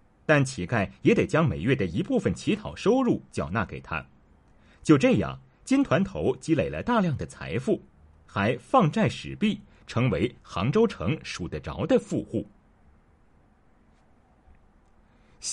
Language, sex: Chinese, male